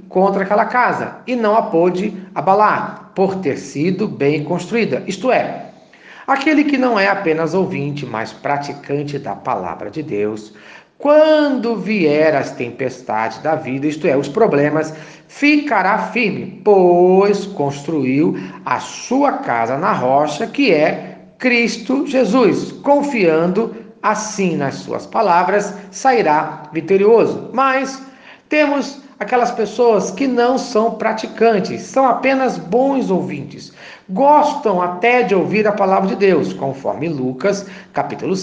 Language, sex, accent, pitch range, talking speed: Portuguese, male, Brazilian, 165-235 Hz, 125 wpm